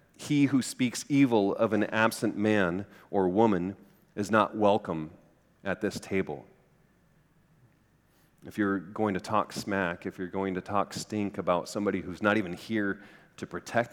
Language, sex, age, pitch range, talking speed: English, male, 40-59, 95-110 Hz, 155 wpm